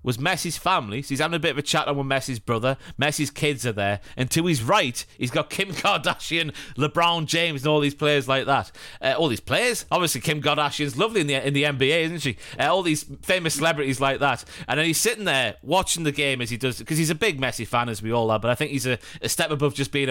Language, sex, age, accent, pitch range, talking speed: English, male, 30-49, British, 125-155 Hz, 265 wpm